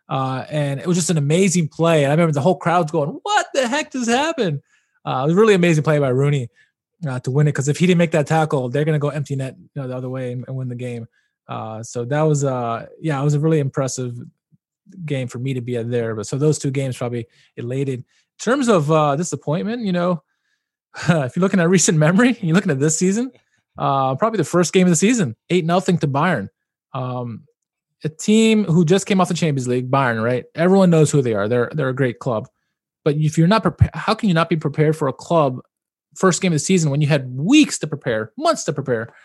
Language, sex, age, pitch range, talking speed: English, male, 20-39, 130-180 Hz, 245 wpm